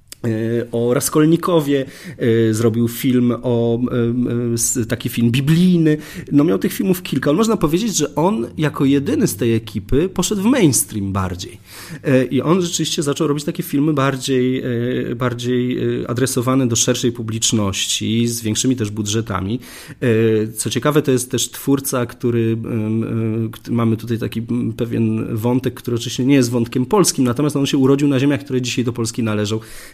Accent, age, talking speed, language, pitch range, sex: native, 40-59, 145 wpm, Polish, 110-135 Hz, male